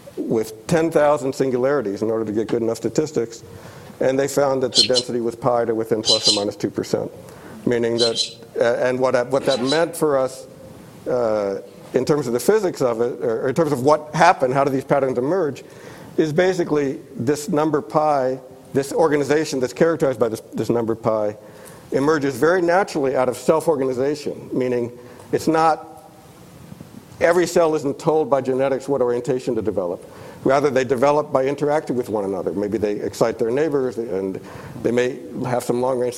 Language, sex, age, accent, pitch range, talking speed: English, male, 60-79, American, 120-150 Hz, 175 wpm